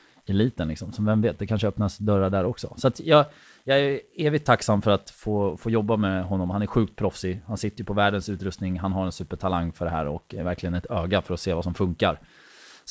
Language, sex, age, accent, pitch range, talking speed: Swedish, male, 20-39, native, 90-110 Hz, 250 wpm